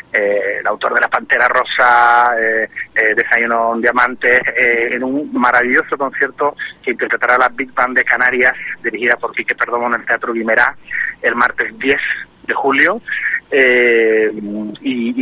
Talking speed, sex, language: 150 wpm, male, Spanish